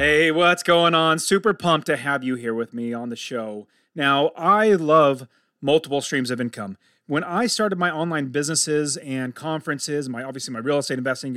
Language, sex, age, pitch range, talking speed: English, male, 30-49, 140-205 Hz, 190 wpm